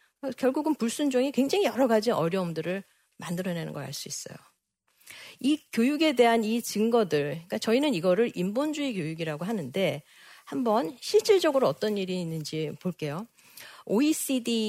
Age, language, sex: 40-59, Korean, female